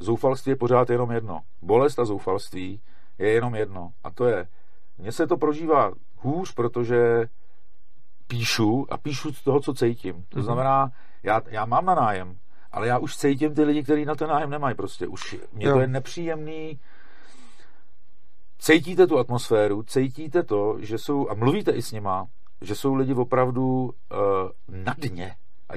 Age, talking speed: 50-69, 165 wpm